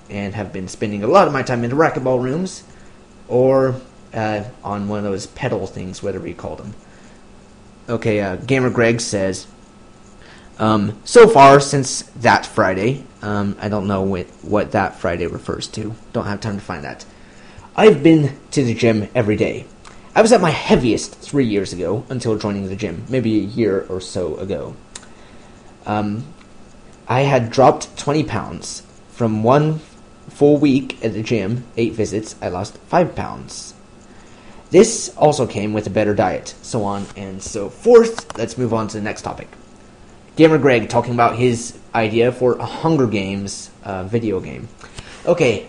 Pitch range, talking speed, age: 100-130 Hz, 170 wpm, 30-49